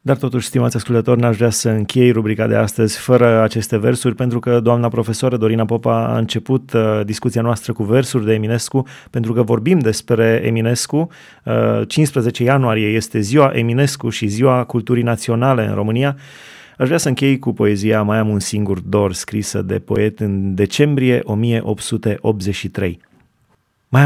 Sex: male